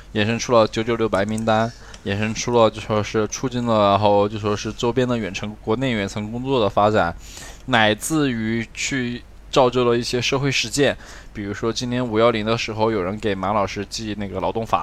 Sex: male